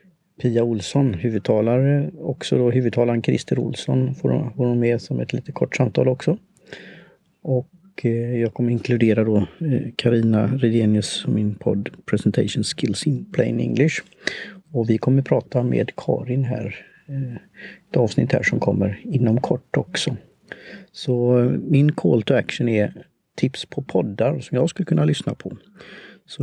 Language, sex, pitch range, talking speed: Swedish, male, 115-145 Hz, 145 wpm